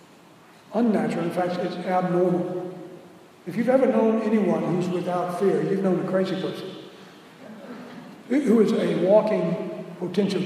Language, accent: English, American